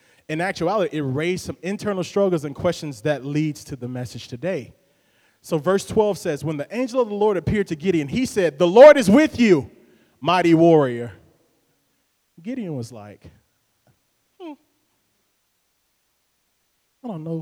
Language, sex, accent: English, male, American